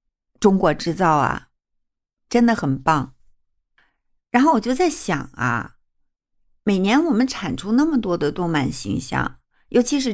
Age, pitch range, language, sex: 60-79, 160-235 Hz, Chinese, female